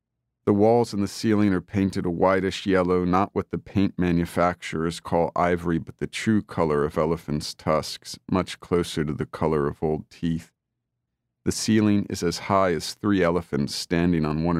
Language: English